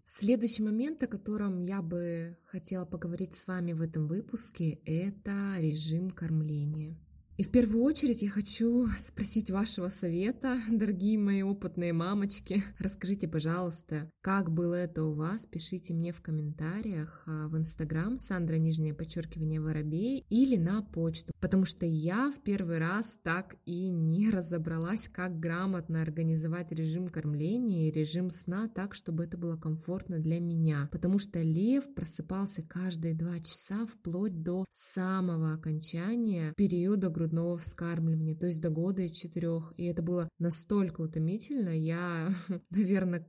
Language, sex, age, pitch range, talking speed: Russian, female, 20-39, 165-195 Hz, 140 wpm